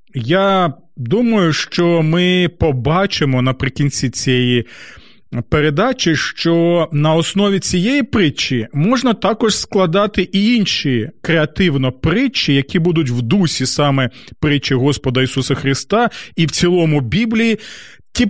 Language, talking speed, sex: Ukrainian, 110 wpm, male